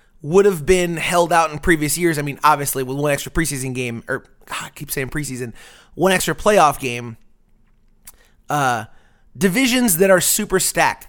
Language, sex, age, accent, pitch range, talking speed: English, male, 30-49, American, 130-165 Hz, 175 wpm